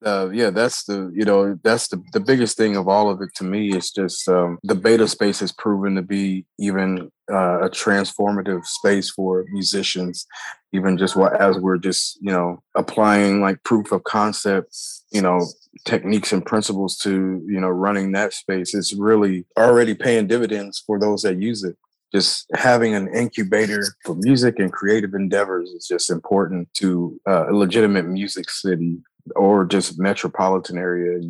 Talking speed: 175 wpm